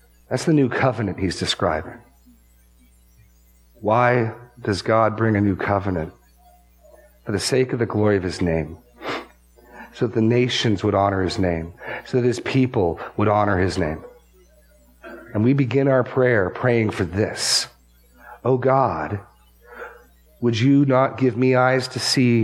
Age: 40-59